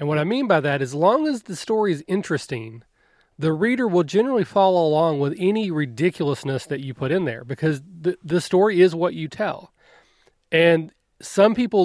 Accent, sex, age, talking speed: American, male, 30-49, 190 wpm